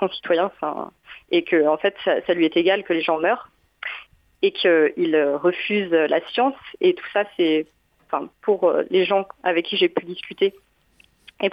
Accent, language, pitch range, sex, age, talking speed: French, French, 180-245 Hz, female, 30-49, 170 wpm